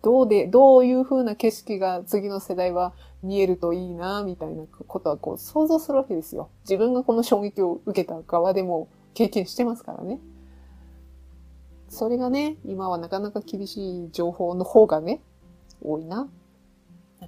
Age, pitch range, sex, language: 30-49, 170-235 Hz, female, Japanese